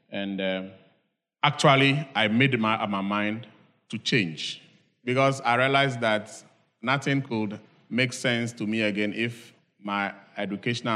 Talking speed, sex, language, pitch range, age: 130 wpm, male, English, 105-135 Hz, 30-49